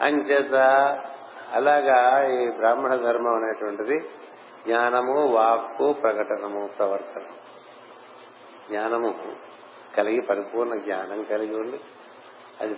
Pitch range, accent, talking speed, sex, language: 110-125 Hz, native, 80 wpm, male, Telugu